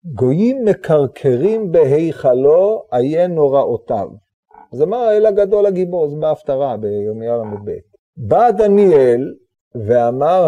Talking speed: 95 wpm